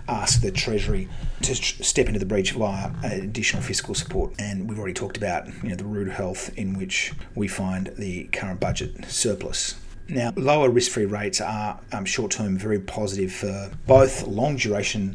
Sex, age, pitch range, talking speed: male, 30-49, 95-110 Hz, 170 wpm